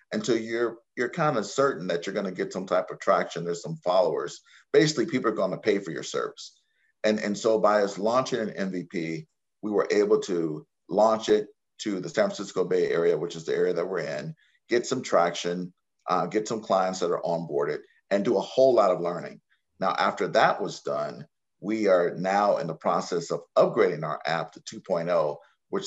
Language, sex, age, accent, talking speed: English, male, 50-69, American, 210 wpm